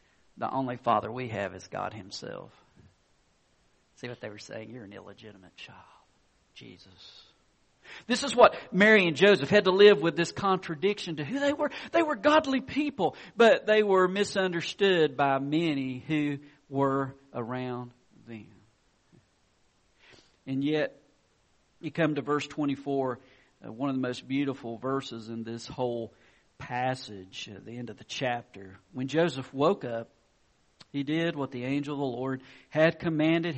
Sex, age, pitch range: male, 50-69, 110-150 Hz